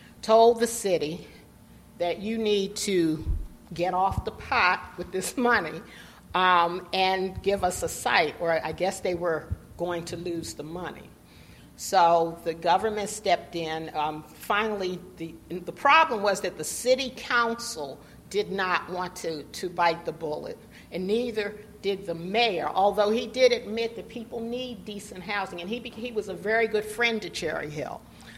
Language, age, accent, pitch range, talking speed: English, 50-69, American, 170-220 Hz, 165 wpm